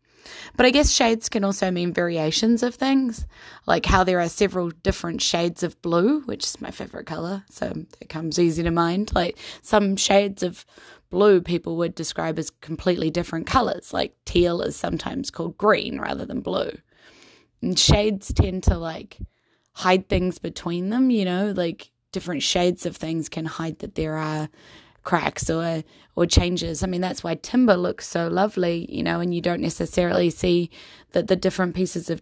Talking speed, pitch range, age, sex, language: 180 wpm, 165-200 Hz, 10-29, female, English